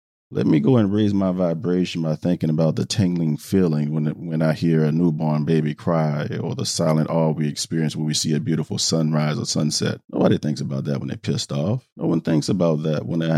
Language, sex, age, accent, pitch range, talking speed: English, male, 40-59, American, 80-100 Hz, 230 wpm